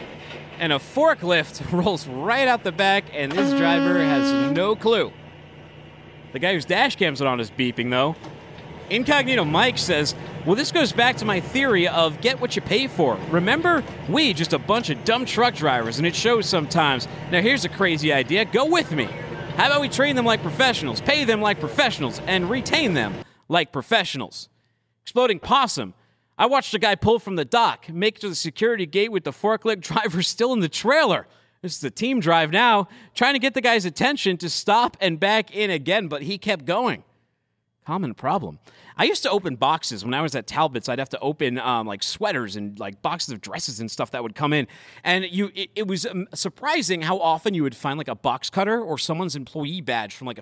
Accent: American